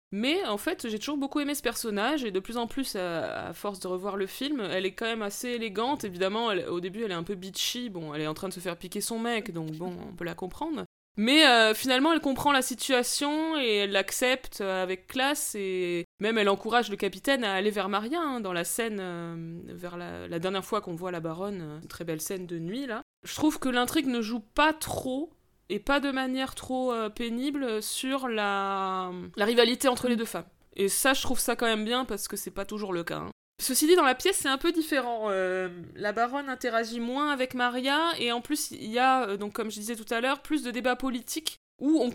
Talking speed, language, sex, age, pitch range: 240 wpm, French, female, 20-39, 195-265 Hz